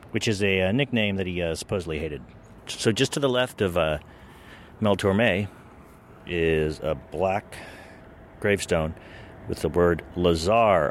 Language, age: English, 40-59